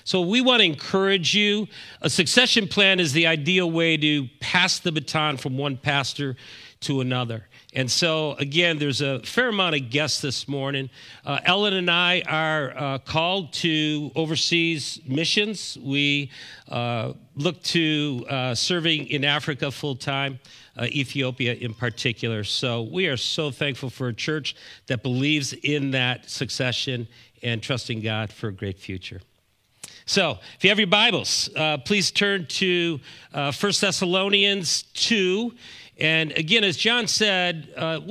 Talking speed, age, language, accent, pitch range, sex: 155 wpm, 50-69, English, American, 130-170 Hz, male